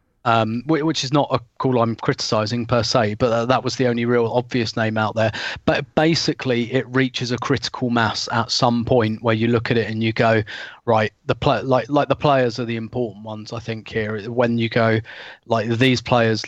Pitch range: 115-130 Hz